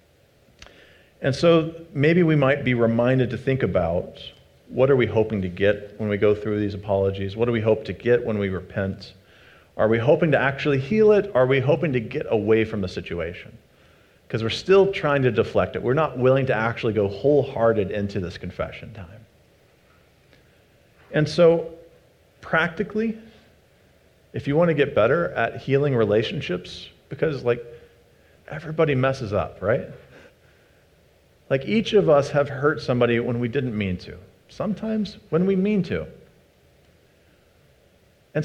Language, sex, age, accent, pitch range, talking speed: English, male, 40-59, American, 105-150 Hz, 160 wpm